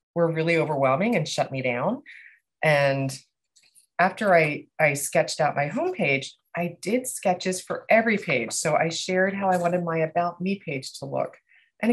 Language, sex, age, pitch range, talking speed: English, female, 30-49, 135-180 Hz, 170 wpm